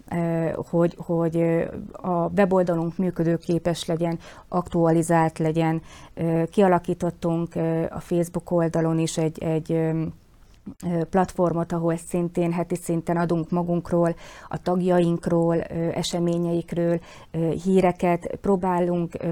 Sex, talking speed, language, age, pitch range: female, 85 wpm, Hungarian, 30-49, 165-180 Hz